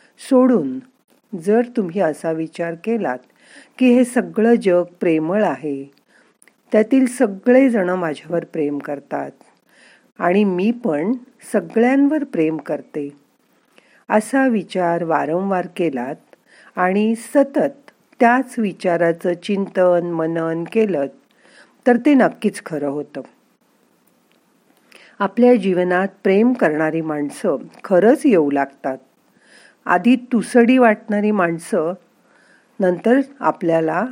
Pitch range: 170-245 Hz